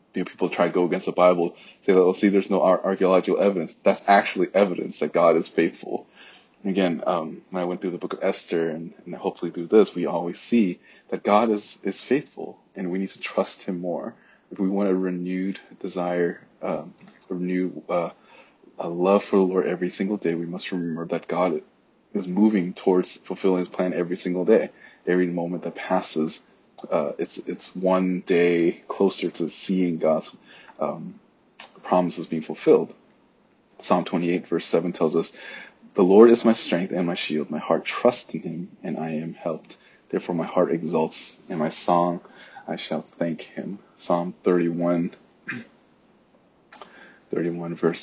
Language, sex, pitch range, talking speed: English, male, 85-95 Hz, 175 wpm